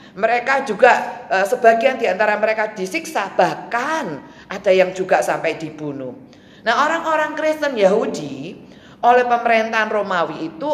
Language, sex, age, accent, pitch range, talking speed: Indonesian, female, 40-59, native, 170-260 Hz, 110 wpm